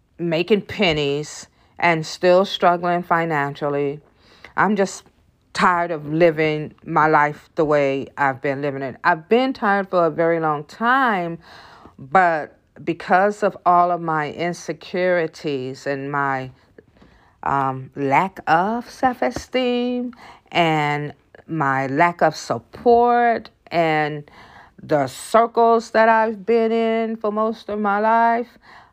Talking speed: 120 wpm